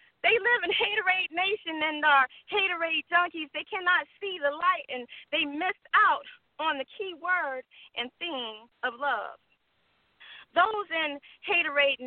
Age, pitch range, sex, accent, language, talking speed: 40-59, 255-350 Hz, female, American, English, 145 wpm